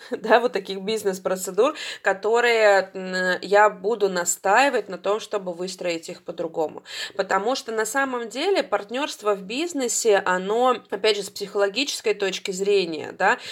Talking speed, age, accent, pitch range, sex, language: 135 wpm, 20-39, native, 190-225 Hz, female, Russian